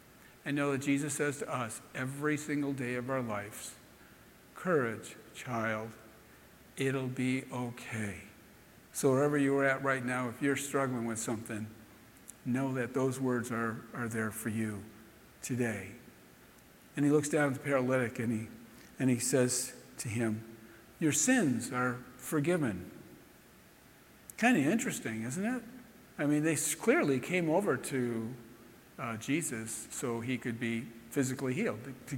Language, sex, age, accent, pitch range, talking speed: English, male, 50-69, American, 115-140 Hz, 145 wpm